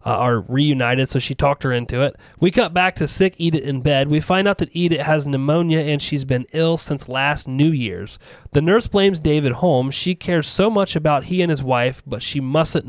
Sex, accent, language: male, American, English